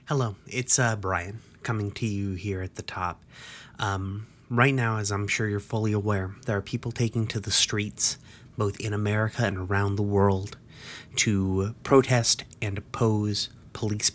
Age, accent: 30-49, American